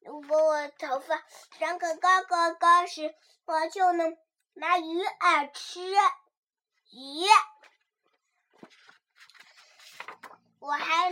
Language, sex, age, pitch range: Chinese, male, 20-39, 295-370 Hz